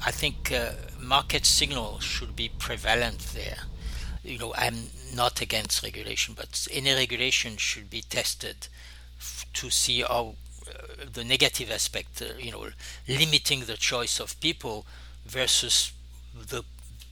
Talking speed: 135 wpm